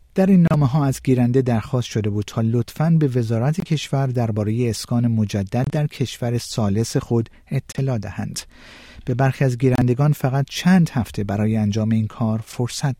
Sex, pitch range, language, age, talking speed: male, 120-150 Hz, Persian, 50-69, 160 wpm